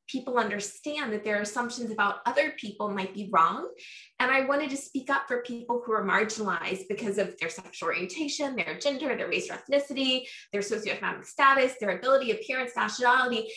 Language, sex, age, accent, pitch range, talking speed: English, female, 20-39, American, 195-250 Hz, 175 wpm